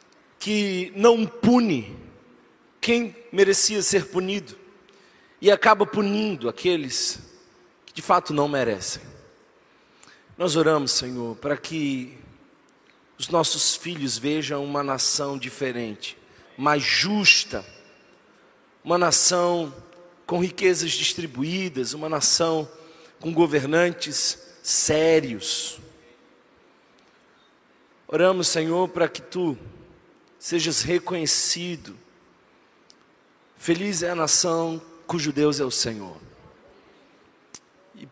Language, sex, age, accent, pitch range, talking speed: Portuguese, male, 40-59, Brazilian, 145-180 Hz, 90 wpm